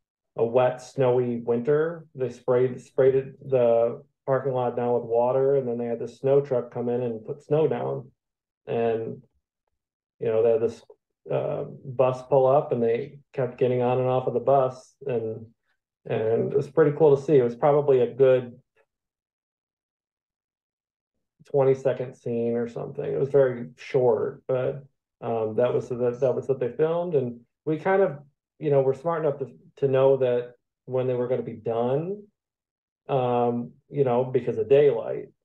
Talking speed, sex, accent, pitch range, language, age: 175 wpm, male, American, 120-145 Hz, English, 40-59